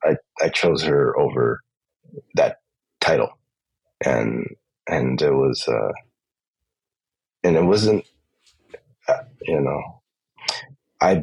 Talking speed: 95 wpm